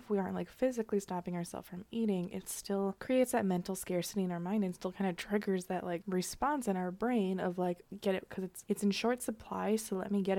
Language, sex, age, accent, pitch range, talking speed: English, female, 20-39, American, 185-220 Hz, 250 wpm